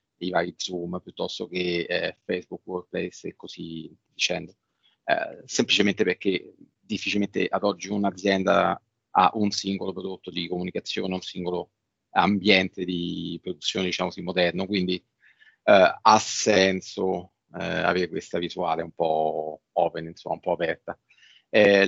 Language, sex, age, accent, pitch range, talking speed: Italian, male, 30-49, native, 90-115 Hz, 130 wpm